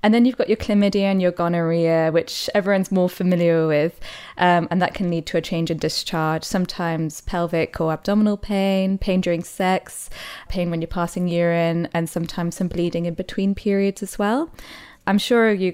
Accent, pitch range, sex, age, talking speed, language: British, 165-190 Hz, female, 20-39, 185 wpm, English